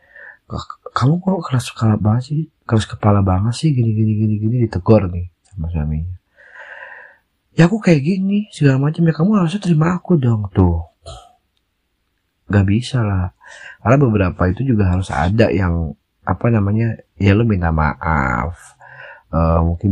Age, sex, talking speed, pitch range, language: 30-49, male, 135 wpm, 90-115 Hz, Indonesian